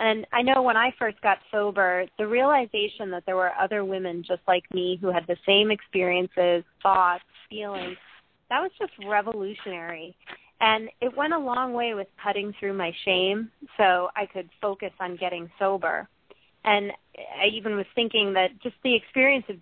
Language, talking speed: English, 175 wpm